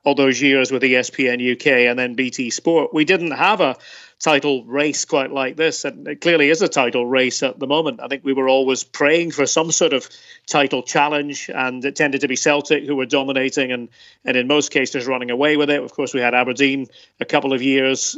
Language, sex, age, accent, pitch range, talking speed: English, male, 30-49, British, 135-155 Hz, 225 wpm